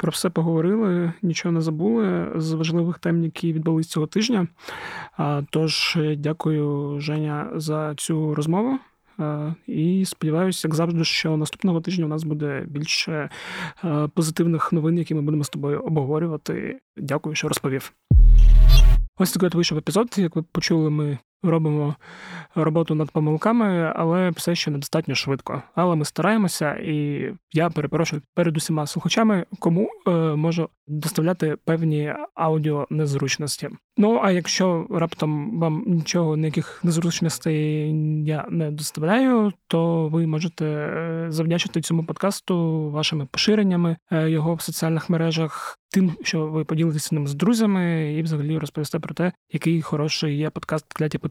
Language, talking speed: Ukrainian, 130 wpm